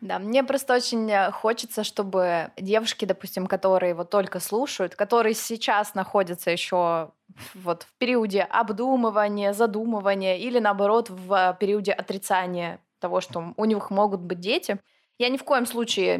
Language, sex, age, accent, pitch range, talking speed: Russian, female, 20-39, native, 190-235 Hz, 140 wpm